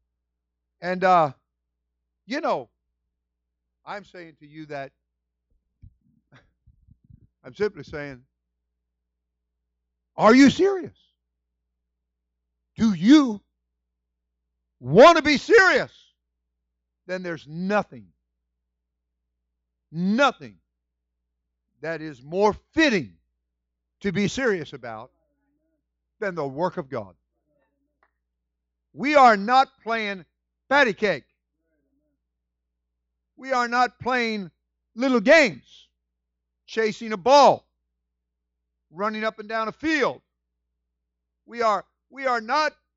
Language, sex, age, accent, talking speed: English, male, 50-69, American, 90 wpm